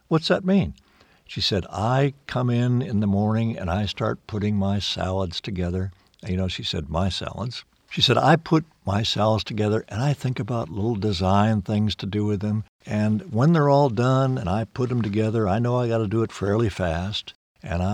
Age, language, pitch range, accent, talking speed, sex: 60-79, English, 95-150 Hz, American, 205 wpm, male